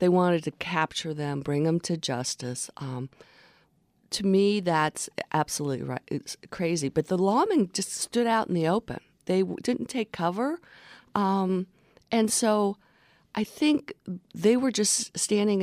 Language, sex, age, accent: English, female, 50-69, American